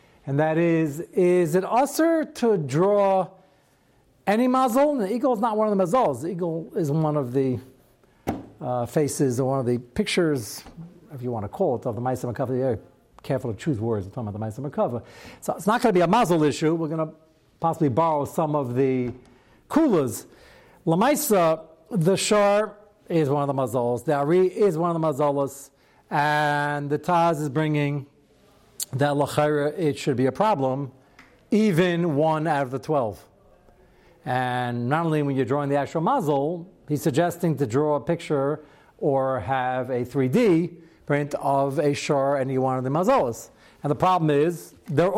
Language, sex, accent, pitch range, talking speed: English, male, American, 135-180 Hz, 180 wpm